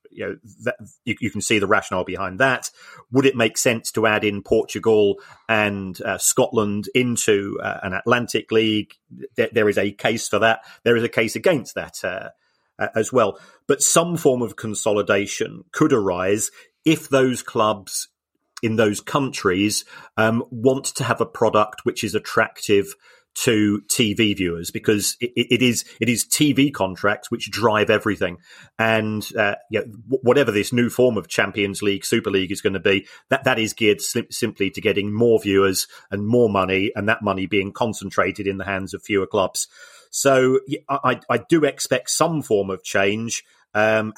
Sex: male